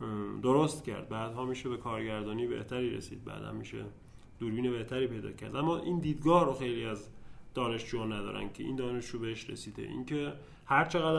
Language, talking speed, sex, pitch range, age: Persian, 160 wpm, male, 115-145 Hz, 30-49